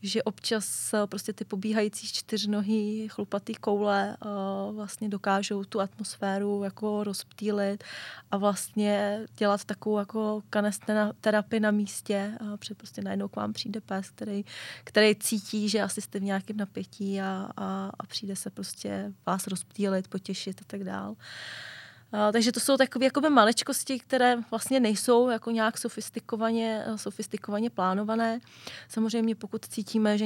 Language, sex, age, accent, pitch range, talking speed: Czech, female, 20-39, native, 195-215 Hz, 135 wpm